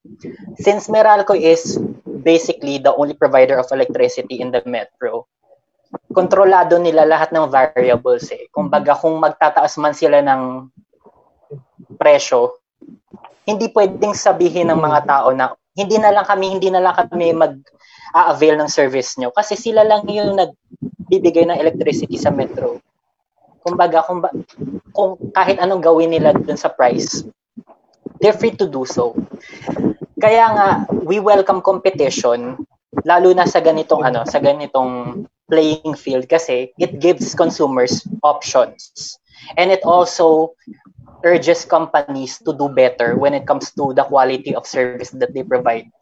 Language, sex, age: Filipino, female, 20-39